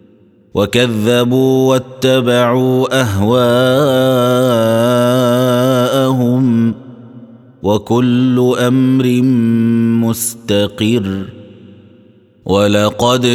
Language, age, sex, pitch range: Arabic, 30-49, male, 110-125 Hz